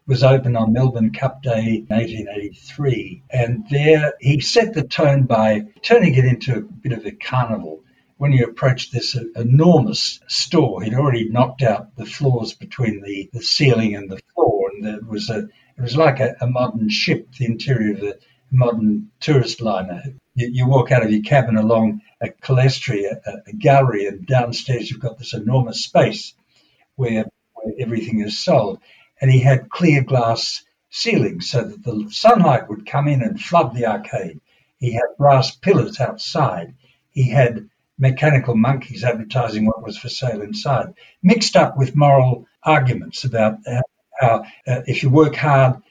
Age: 60-79